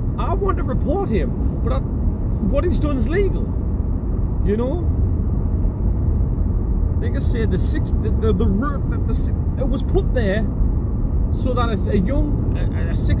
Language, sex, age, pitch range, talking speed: English, male, 30-49, 85-100 Hz, 160 wpm